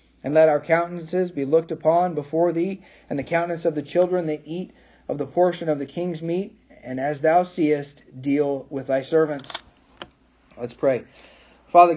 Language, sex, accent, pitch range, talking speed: English, male, American, 125-155 Hz, 175 wpm